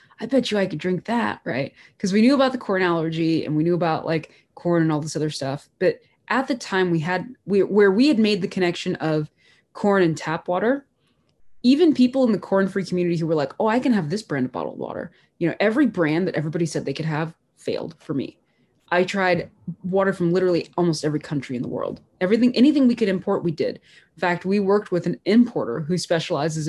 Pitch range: 160-200 Hz